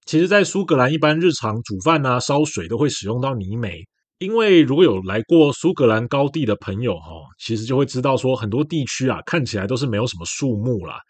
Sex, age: male, 20-39